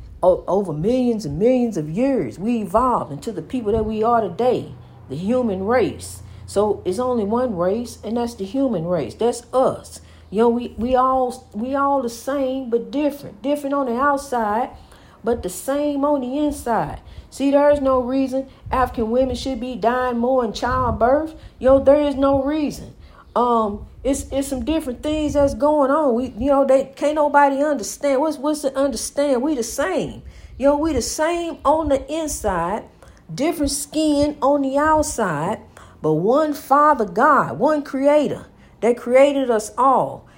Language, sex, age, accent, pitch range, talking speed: English, female, 40-59, American, 215-280 Hz, 170 wpm